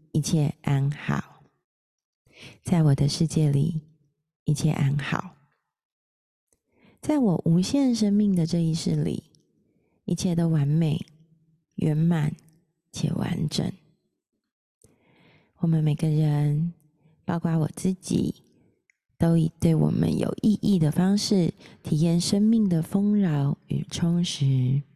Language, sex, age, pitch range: Chinese, female, 30-49, 150-185 Hz